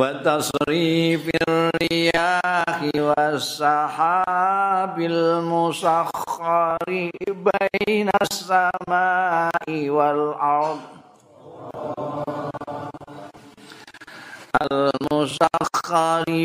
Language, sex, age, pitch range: Indonesian, male, 50-69, 150-170 Hz